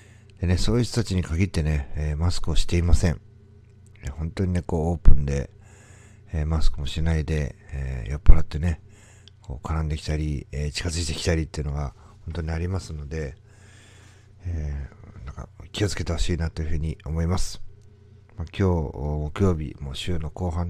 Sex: male